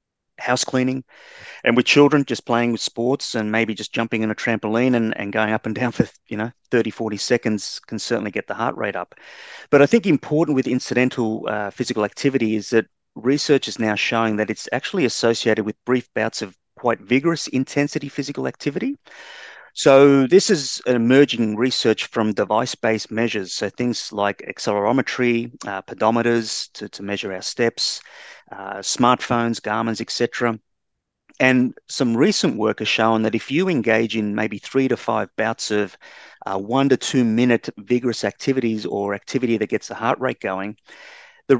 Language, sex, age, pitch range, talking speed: English, male, 30-49, 110-130 Hz, 170 wpm